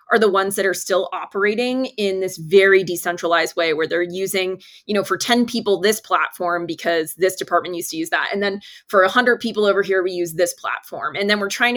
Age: 20-39